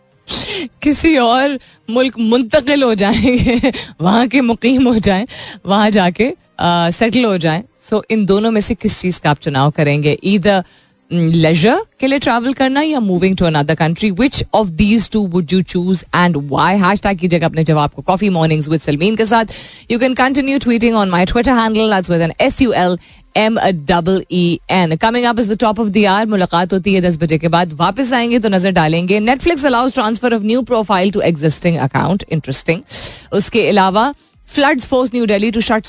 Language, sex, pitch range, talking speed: Hindi, female, 170-230 Hz, 200 wpm